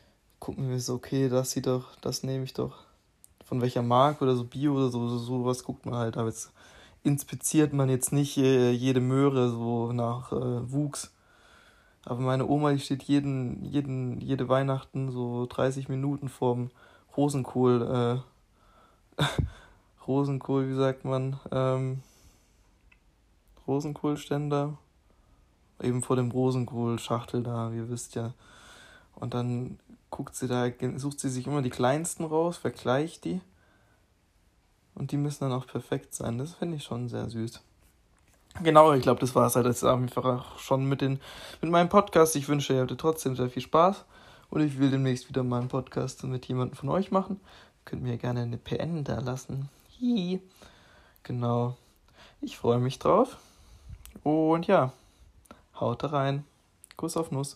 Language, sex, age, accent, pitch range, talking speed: German, male, 20-39, German, 120-140 Hz, 150 wpm